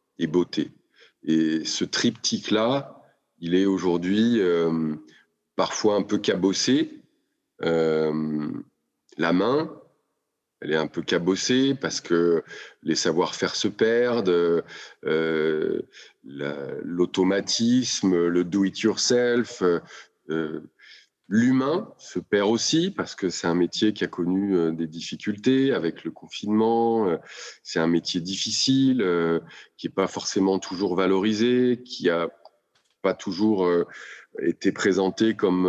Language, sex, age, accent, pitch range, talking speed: French, male, 40-59, French, 85-110 Hz, 125 wpm